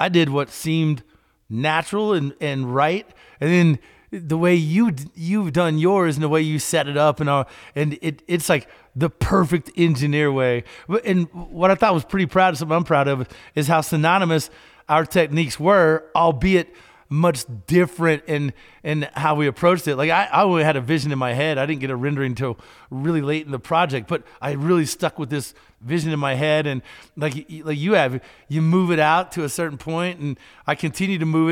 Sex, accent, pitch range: male, American, 140-170 Hz